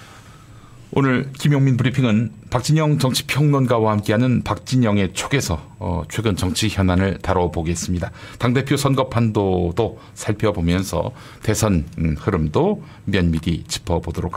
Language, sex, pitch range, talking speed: English, male, 95-135 Hz, 80 wpm